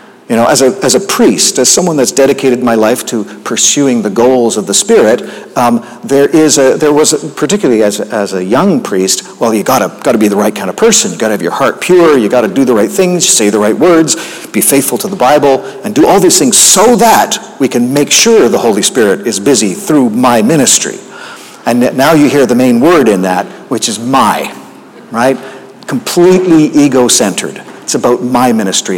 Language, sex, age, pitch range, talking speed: English, male, 50-69, 115-155 Hz, 215 wpm